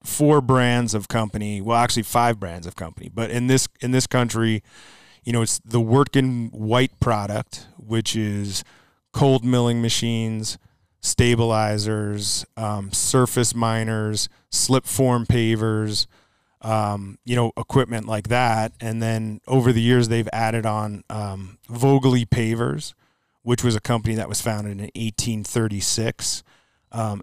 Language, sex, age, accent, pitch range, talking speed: English, male, 30-49, American, 105-120 Hz, 135 wpm